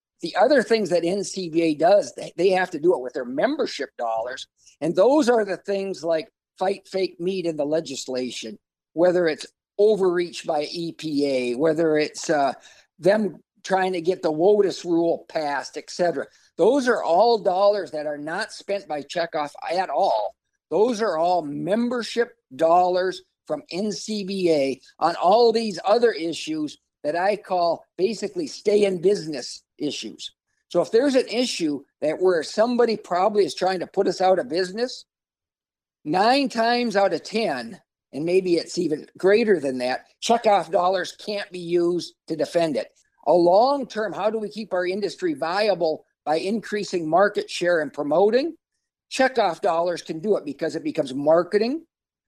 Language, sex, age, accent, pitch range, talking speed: English, male, 50-69, American, 165-220 Hz, 160 wpm